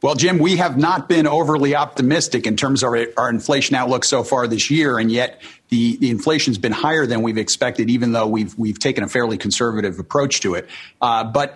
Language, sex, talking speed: English, male, 215 wpm